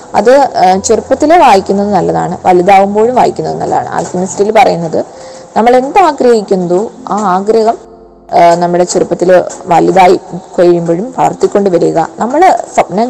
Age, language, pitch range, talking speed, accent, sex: 20-39, Malayalam, 175-225 Hz, 85 wpm, native, female